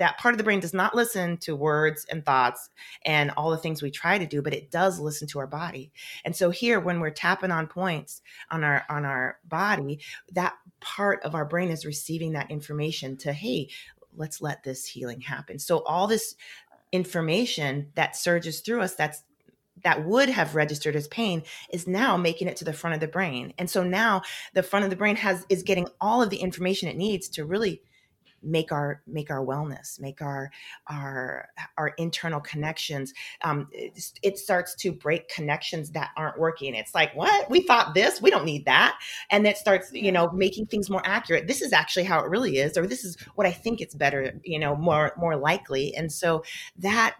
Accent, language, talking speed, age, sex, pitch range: American, English, 205 wpm, 30-49, female, 150-190 Hz